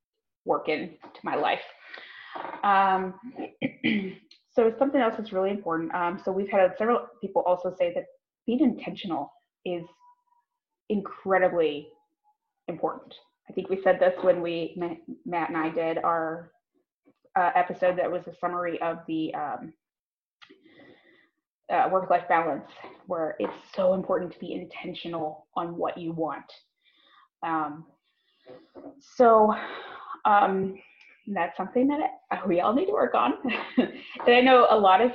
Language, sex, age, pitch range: English, female, 20-39, 180-275 Hz